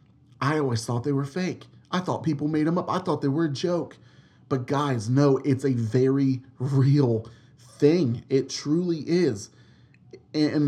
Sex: male